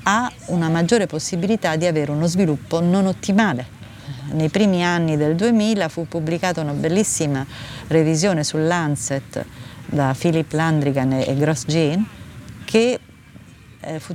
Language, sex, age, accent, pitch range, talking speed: Italian, female, 40-59, native, 145-180 Hz, 120 wpm